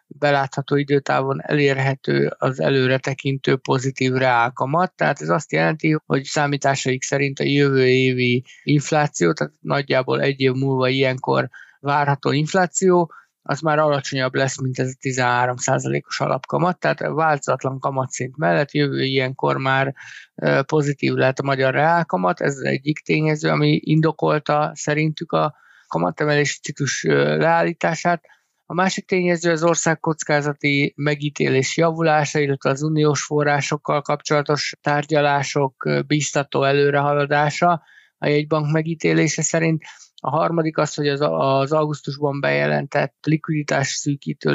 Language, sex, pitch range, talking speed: Hungarian, male, 135-155 Hz, 115 wpm